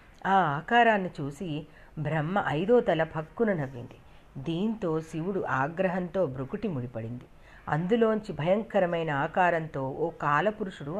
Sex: female